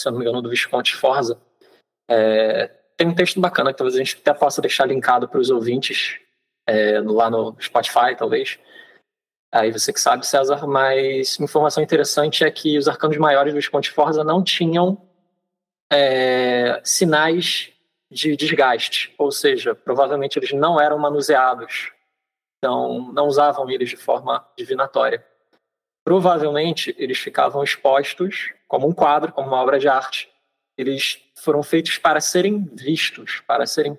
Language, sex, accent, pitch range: Portuguese, male, Brazilian, 140-185 Hz